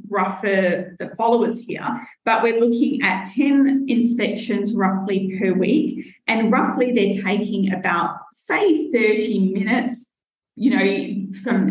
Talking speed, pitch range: 125 wpm, 195-240 Hz